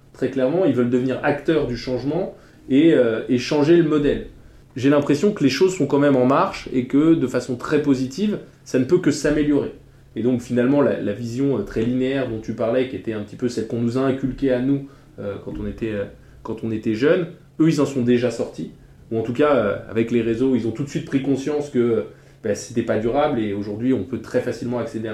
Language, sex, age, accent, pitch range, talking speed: French, male, 20-39, French, 120-145 Hz, 240 wpm